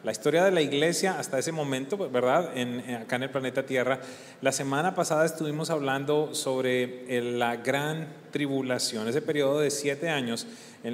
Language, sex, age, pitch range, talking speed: English, male, 30-49, 125-155 Hz, 165 wpm